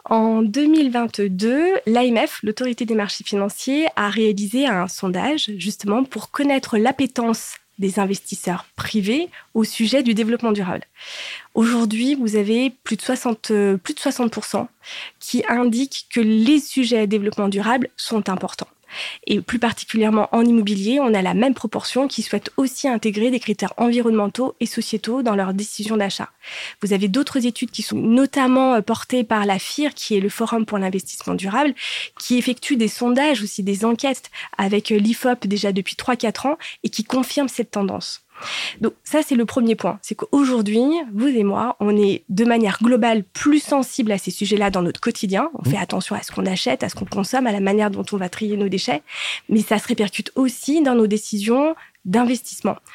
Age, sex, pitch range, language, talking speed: 20-39, female, 205-255 Hz, French, 175 wpm